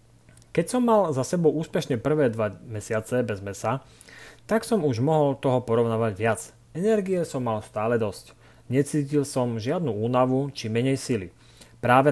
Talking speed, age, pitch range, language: 155 wpm, 30-49, 115-155 Hz, Slovak